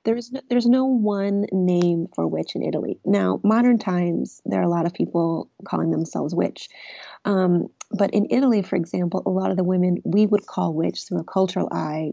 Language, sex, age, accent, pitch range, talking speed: English, female, 30-49, American, 175-205 Hz, 205 wpm